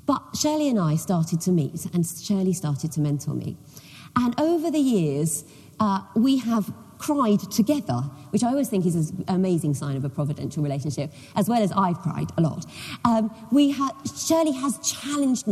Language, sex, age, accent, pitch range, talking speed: English, female, 40-59, British, 155-240 Hz, 180 wpm